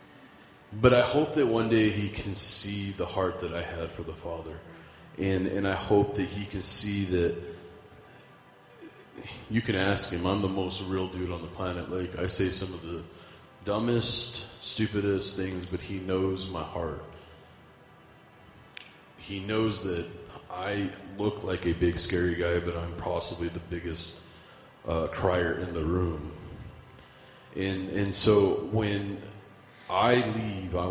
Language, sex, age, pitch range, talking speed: English, male, 30-49, 85-100 Hz, 155 wpm